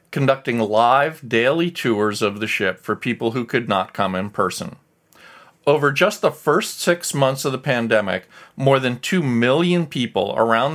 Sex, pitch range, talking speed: male, 105-145 Hz, 165 wpm